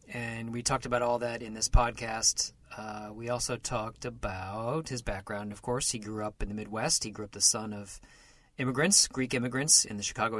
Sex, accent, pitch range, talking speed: male, American, 105-125 Hz, 210 wpm